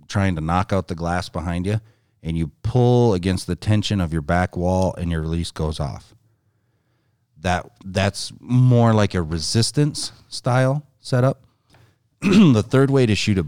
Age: 40-59